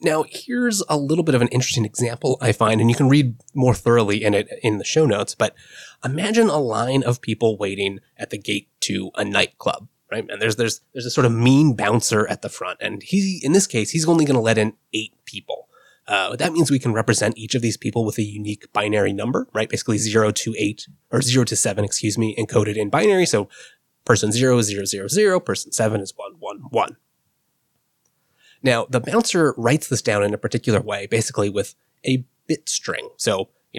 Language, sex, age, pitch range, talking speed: English, male, 20-39, 110-145 Hz, 215 wpm